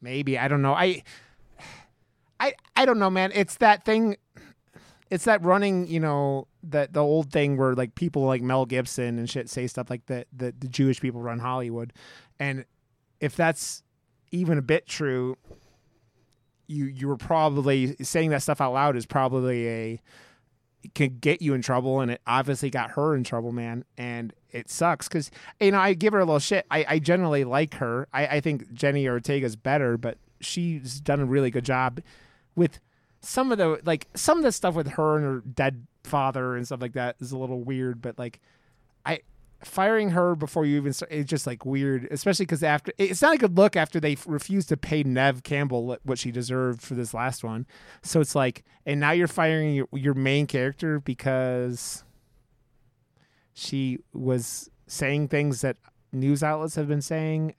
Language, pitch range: English, 125-155 Hz